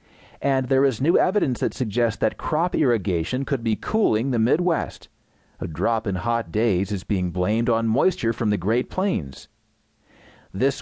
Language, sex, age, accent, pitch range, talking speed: English, male, 40-59, American, 110-145 Hz, 165 wpm